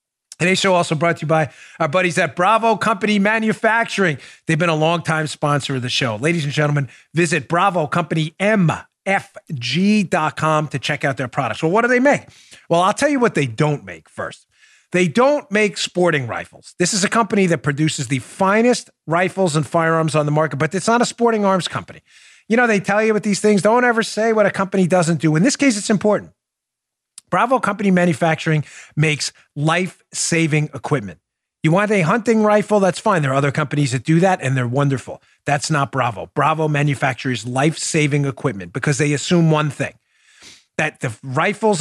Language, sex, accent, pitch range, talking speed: English, male, American, 145-195 Hz, 185 wpm